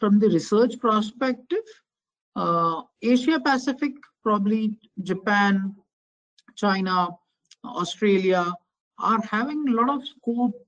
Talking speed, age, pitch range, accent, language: 95 wpm, 50-69, 185-235 Hz, Indian, English